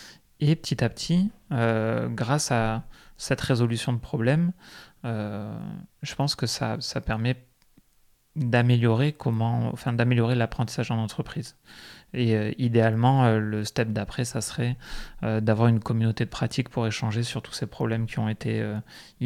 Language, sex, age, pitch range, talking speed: French, male, 30-49, 110-130 Hz, 145 wpm